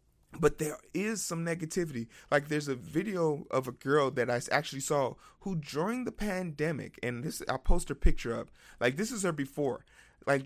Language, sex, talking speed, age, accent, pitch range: English, male, 190 wpm, 30-49, American, 125-180 Hz